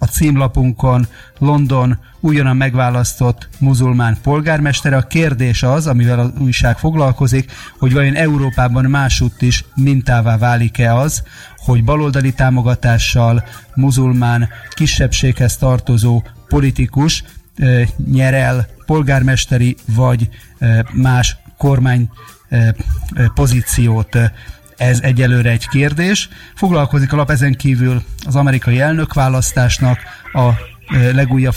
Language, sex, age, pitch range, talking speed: Hungarian, male, 30-49, 120-140 Hz, 95 wpm